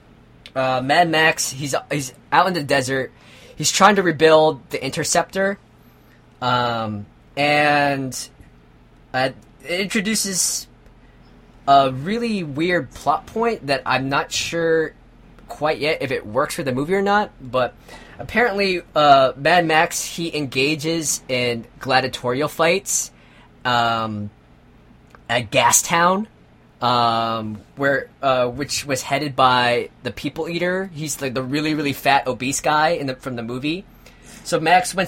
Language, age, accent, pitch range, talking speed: English, 20-39, American, 120-160 Hz, 135 wpm